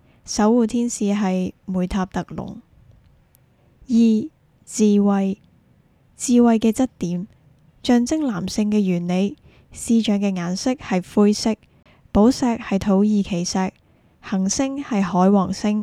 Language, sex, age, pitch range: Chinese, female, 10-29, 190-235 Hz